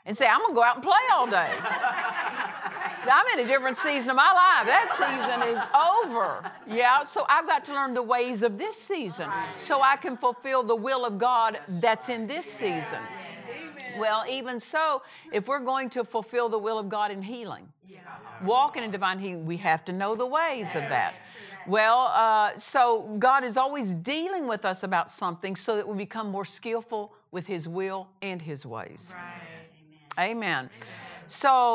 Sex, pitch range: female, 185-250 Hz